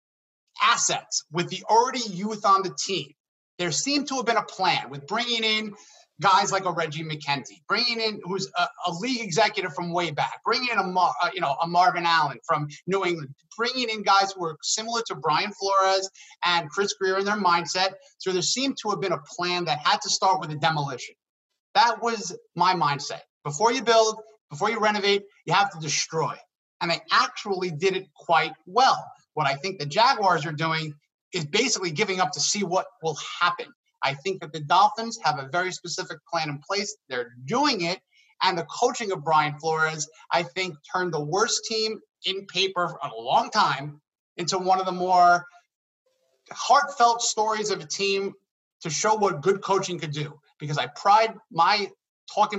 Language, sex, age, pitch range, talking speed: English, male, 30-49, 160-210 Hz, 190 wpm